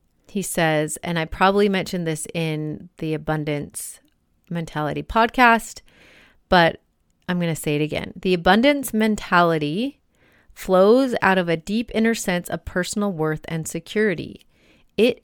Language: English